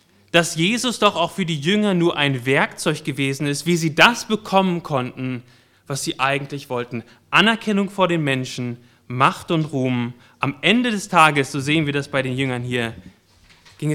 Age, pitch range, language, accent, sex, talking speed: 30-49, 115-185 Hz, German, German, male, 175 wpm